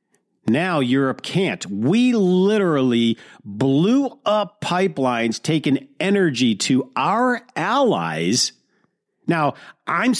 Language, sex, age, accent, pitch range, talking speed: English, male, 50-69, American, 125-165 Hz, 90 wpm